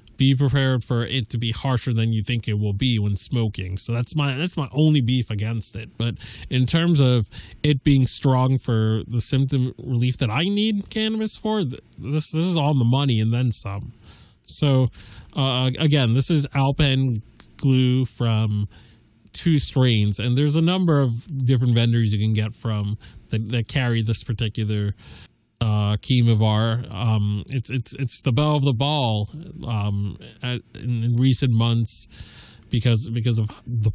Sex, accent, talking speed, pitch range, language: male, American, 165 wpm, 110-135 Hz, English